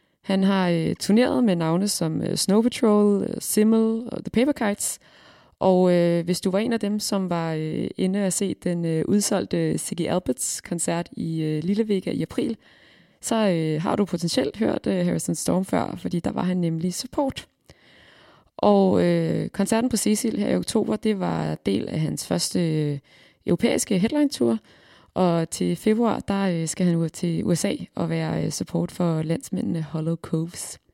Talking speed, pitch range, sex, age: 155 wpm, 165-210 Hz, female, 20-39